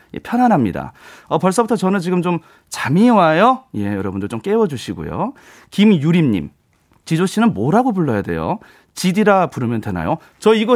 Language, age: Korean, 30-49